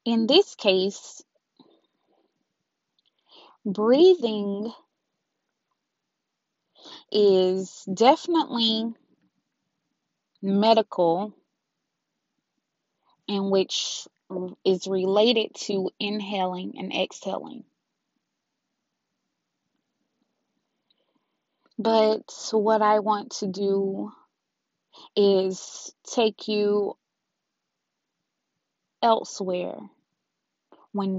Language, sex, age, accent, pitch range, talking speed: English, female, 20-39, American, 190-225 Hz, 50 wpm